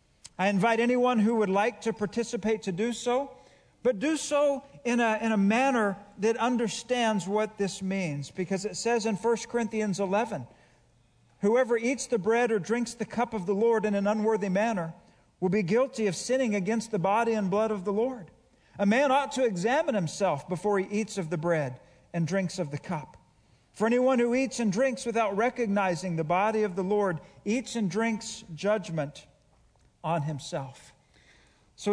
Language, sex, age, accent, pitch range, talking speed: English, male, 50-69, American, 175-230 Hz, 180 wpm